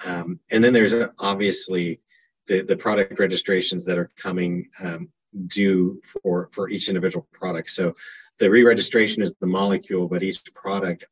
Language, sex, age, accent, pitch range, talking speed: English, male, 30-49, American, 85-95 Hz, 150 wpm